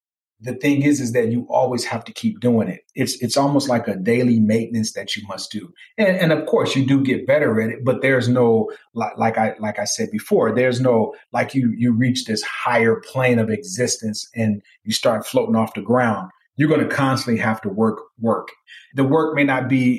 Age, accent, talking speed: 40-59, American, 220 wpm